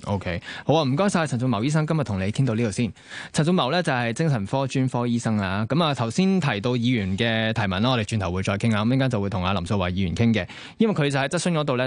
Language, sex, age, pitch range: Chinese, male, 20-39, 100-135 Hz